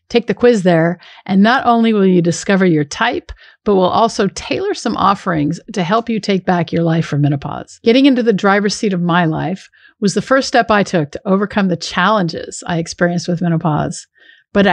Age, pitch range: 50-69, 175-225 Hz